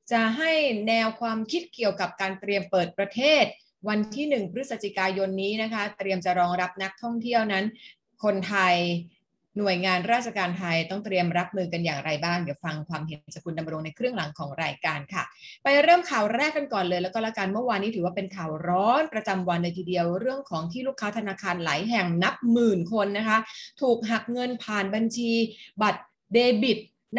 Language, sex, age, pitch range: Thai, female, 30-49, 180-235 Hz